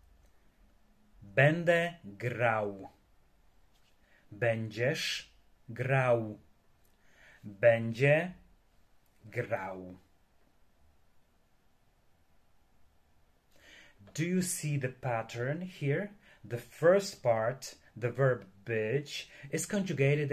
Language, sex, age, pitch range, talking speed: Polish, male, 30-49, 110-145 Hz, 60 wpm